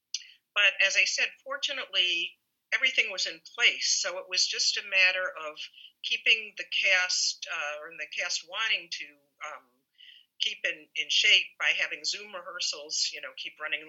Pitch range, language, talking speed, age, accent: 150-225 Hz, English, 165 wpm, 50-69, American